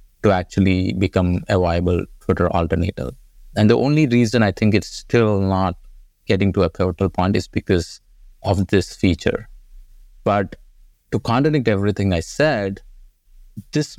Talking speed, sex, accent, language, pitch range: 140 wpm, male, Indian, English, 95-110 Hz